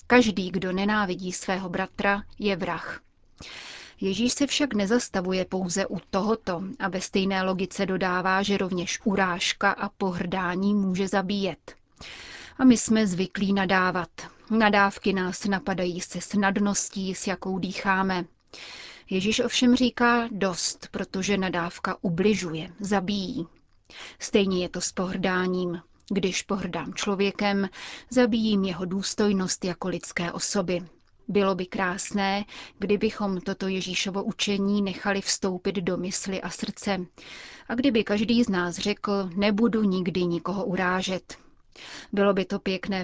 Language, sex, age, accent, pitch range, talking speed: Czech, female, 30-49, native, 185-205 Hz, 125 wpm